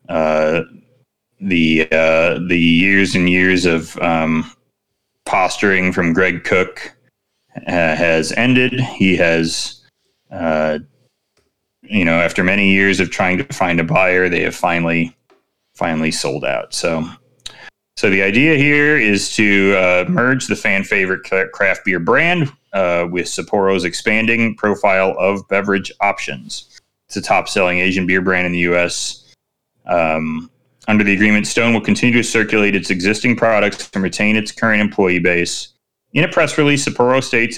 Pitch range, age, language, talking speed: 90-115 Hz, 30-49, English, 150 wpm